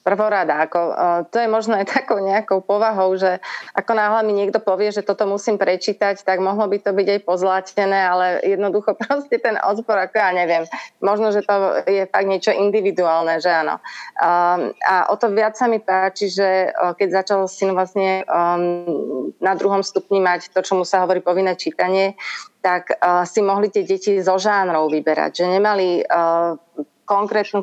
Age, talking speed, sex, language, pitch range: 30-49, 180 wpm, female, Slovak, 185-215 Hz